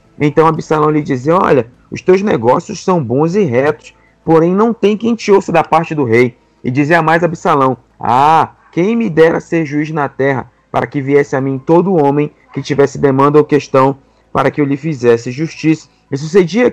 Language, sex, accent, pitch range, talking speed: Portuguese, male, Brazilian, 135-165 Hz, 195 wpm